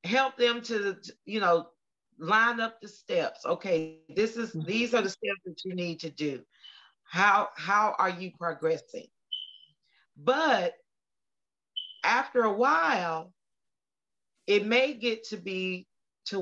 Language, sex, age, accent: English, female, 40-59, American